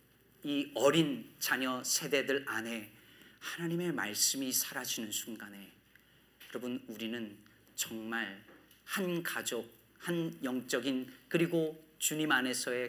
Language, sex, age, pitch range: Korean, male, 40-59, 115-160 Hz